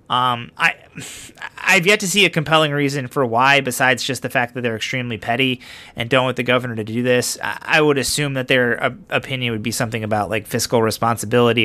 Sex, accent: male, American